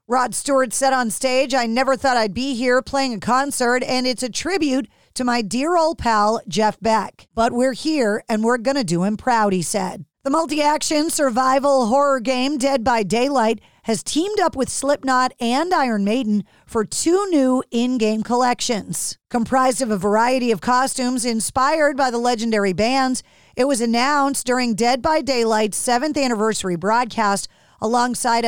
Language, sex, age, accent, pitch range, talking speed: English, female, 40-59, American, 225-270 Hz, 165 wpm